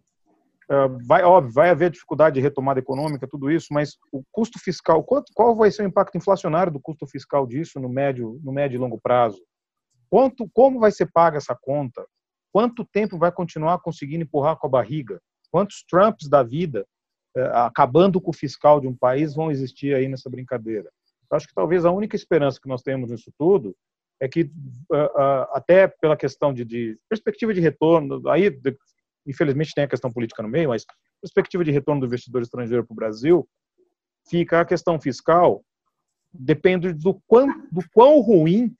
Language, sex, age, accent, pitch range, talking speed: Portuguese, male, 40-59, Brazilian, 135-185 Hz, 180 wpm